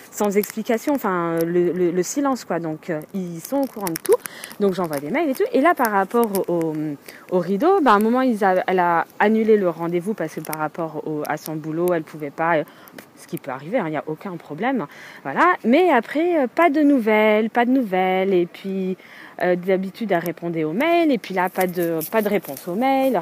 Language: French